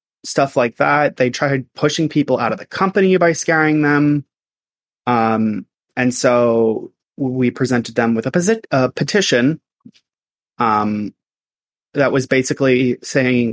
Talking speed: 130 wpm